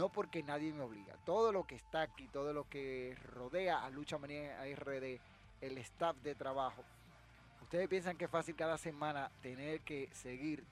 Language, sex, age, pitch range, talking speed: Spanish, male, 30-49, 130-155 Hz, 180 wpm